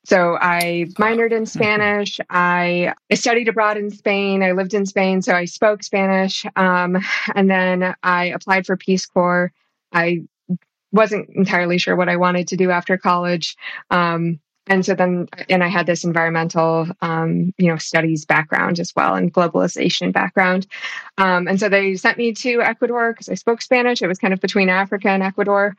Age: 20-39